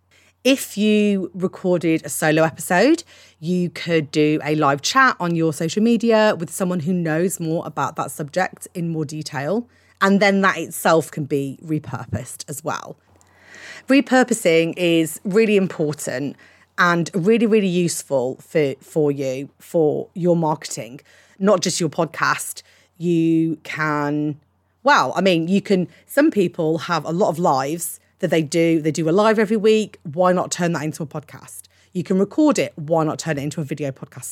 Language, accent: English, British